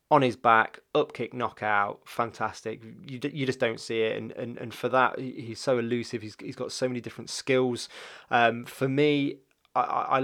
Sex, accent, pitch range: male, British, 115-145 Hz